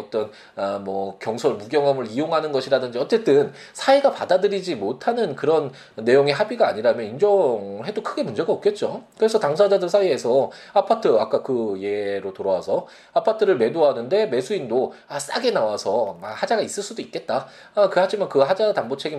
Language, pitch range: Korean, 135-220 Hz